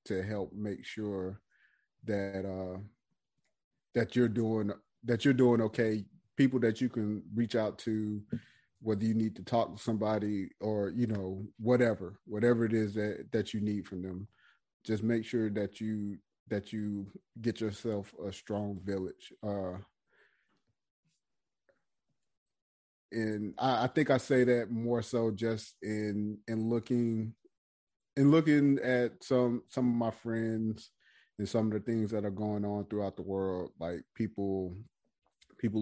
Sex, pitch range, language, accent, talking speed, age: male, 100-115 Hz, English, American, 150 wpm, 30-49